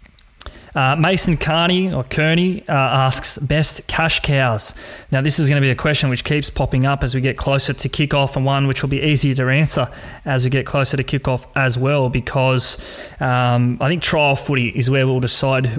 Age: 20-39